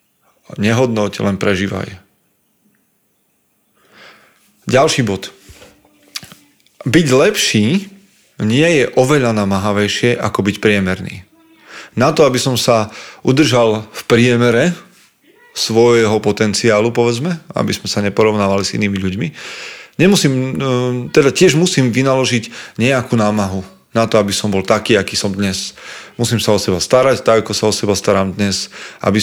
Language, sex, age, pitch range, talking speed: Slovak, male, 30-49, 100-125 Hz, 125 wpm